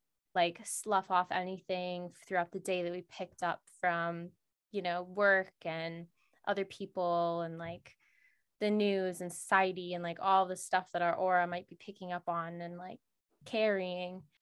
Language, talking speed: English, 165 wpm